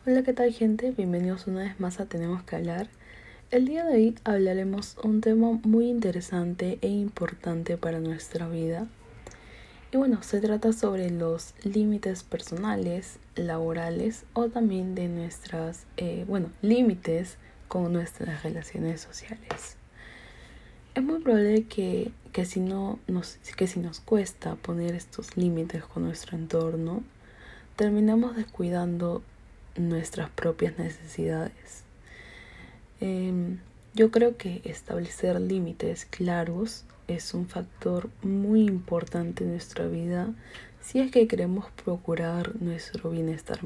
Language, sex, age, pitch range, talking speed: Spanish, female, 20-39, 170-215 Hz, 125 wpm